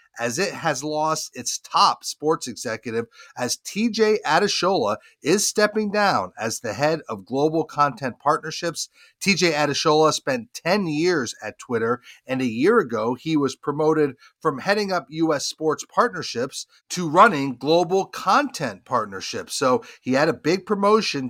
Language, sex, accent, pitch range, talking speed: English, male, American, 135-180 Hz, 145 wpm